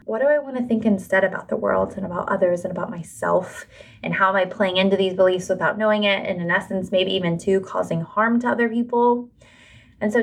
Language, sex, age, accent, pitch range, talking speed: English, female, 20-39, American, 185-240 Hz, 235 wpm